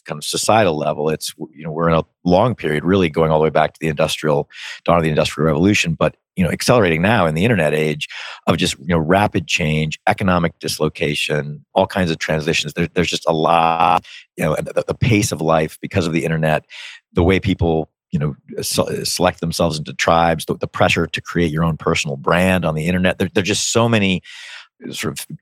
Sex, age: male, 40-59